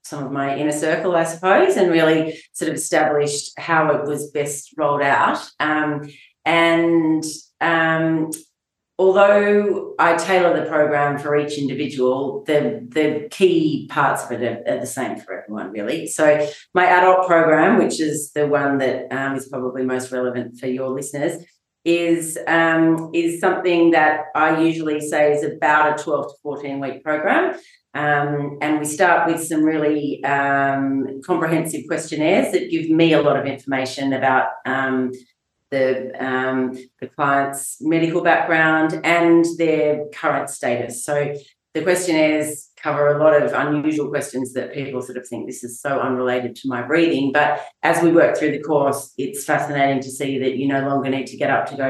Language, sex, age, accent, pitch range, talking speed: English, female, 30-49, Australian, 140-165 Hz, 165 wpm